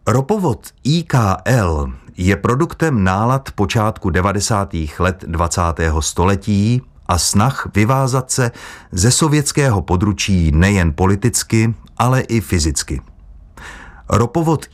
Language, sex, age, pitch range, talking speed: Czech, male, 30-49, 90-115 Hz, 95 wpm